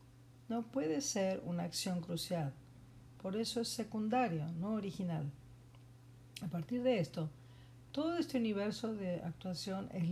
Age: 50-69